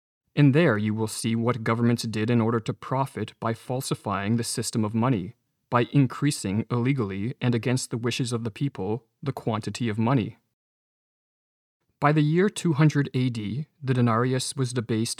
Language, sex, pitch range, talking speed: English, male, 110-135 Hz, 160 wpm